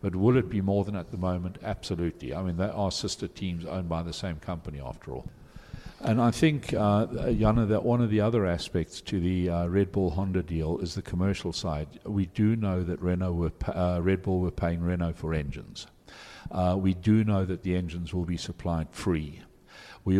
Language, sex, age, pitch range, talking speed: Swedish, male, 50-69, 85-100 Hz, 210 wpm